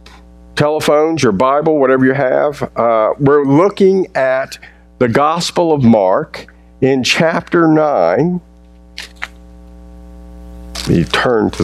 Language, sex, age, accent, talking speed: English, male, 50-69, American, 110 wpm